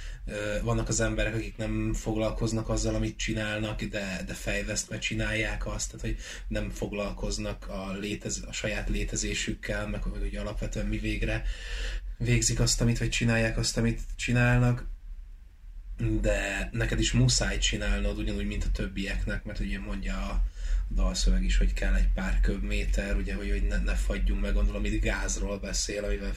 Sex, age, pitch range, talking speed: male, 20-39, 95-110 Hz, 155 wpm